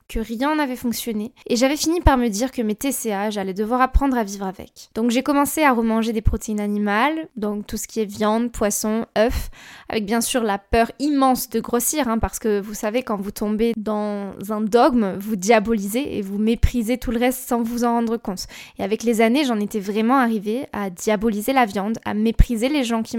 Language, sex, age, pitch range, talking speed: French, female, 10-29, 215-250 Hz, 215 wpm